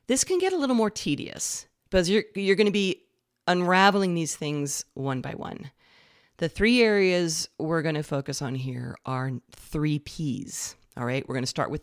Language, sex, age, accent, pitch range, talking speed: English, female, 40-59, American, 135-180 Hz, 195 wpm